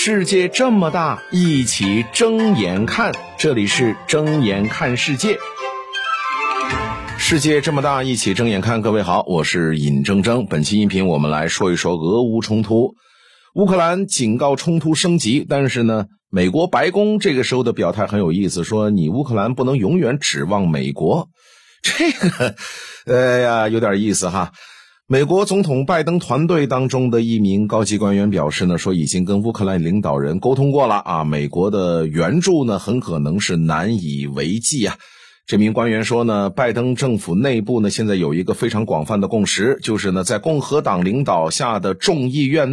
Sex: male